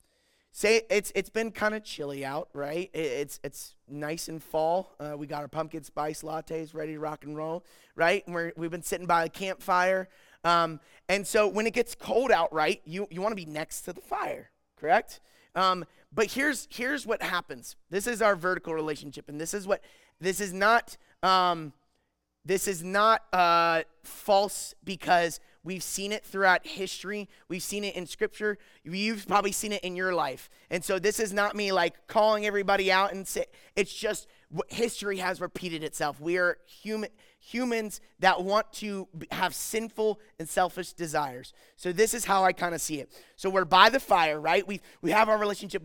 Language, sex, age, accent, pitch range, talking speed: English, male, 30-49, American, 170-215 Hz, 190 wpm